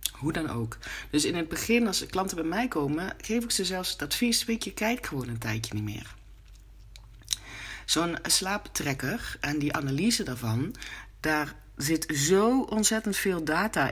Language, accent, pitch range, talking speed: Dutch, Dutch, 125-180 Hz, 165 wpm